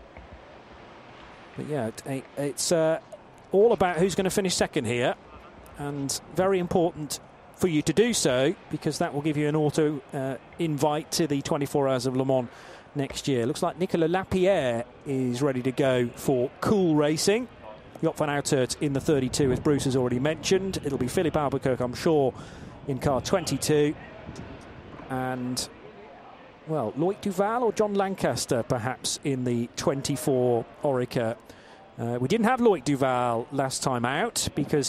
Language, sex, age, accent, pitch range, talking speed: English, male, 40-59, British, 135-175 Hz, 160 wpm